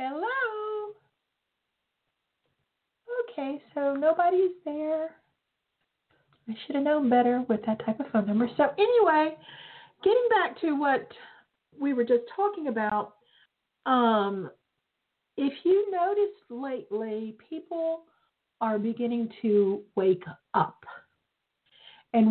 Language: English